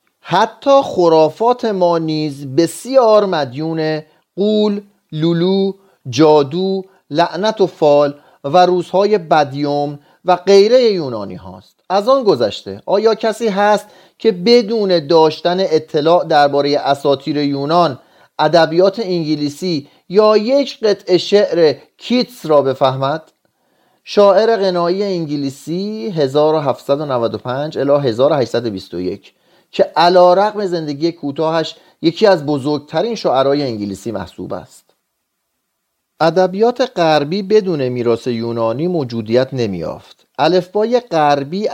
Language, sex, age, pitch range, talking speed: Persian, male, 40-59, 140-195 Hz, 95 wpm